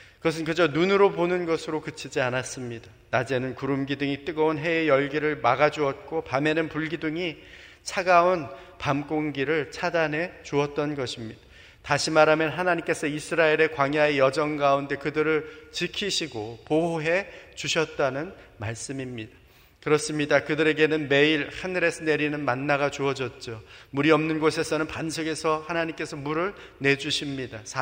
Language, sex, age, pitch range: Korean, male, 30-49, 140-175 Hz